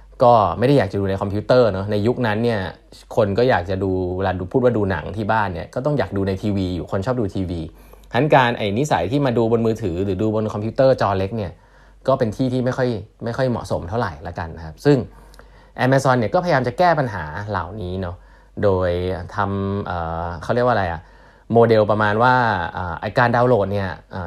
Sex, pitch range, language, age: male, 95-120 Hz, Thai, 20-39